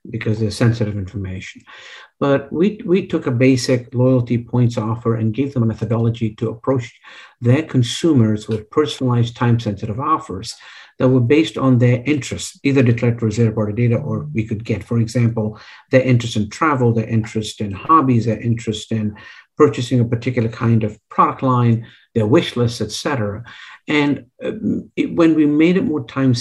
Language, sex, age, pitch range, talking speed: English, male, 60-79, 115-135 Hz, 165 wpm